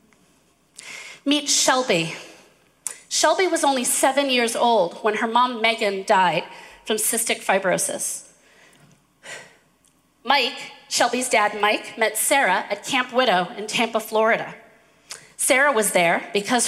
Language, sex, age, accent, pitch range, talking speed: English, female, 40-59, American, 210-280 Hz, 115 wpm